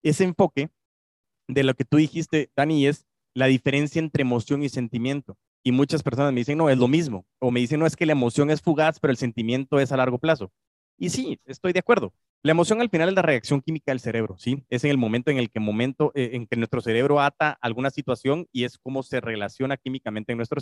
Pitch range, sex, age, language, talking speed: 120-150 Hz, male, 30-49, Spanish, 235 wpm